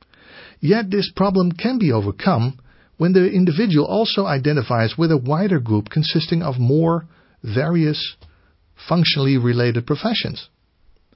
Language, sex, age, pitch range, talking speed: English, male, 50-69, 110-185 Hz, 120 wpm